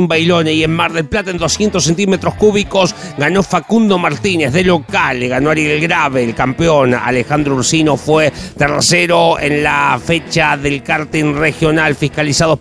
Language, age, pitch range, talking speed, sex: Spanish, 40-59, 150-185 Hz, 150 wpm, male